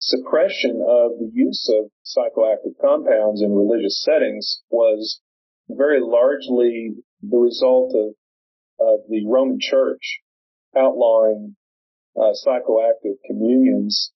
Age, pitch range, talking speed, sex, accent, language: 40-59, 105-135 Hz, 100 wpm, male, American, English